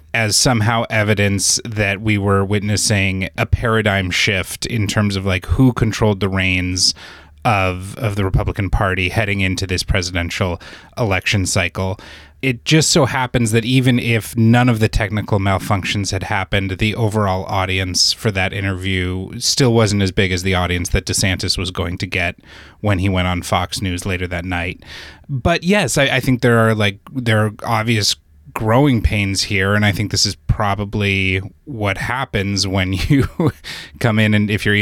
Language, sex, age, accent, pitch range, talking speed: English, male, 30-49, American, 95-110 Hz, 170 wpm